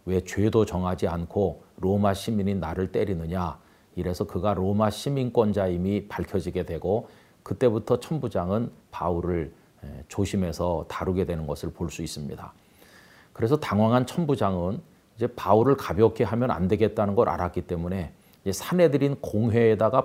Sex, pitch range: male, 90-115 Hz